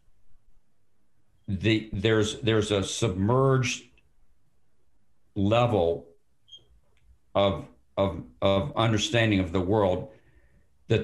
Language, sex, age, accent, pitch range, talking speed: English, male, 50-69, American, 95-115 Hz, 75 wpm